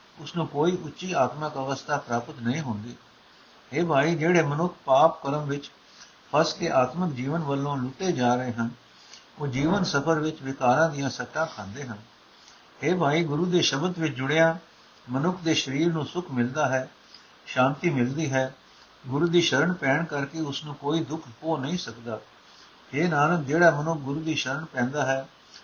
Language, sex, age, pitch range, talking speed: Punjabi, male, 60-79, 125-160 Hz, 90 wpm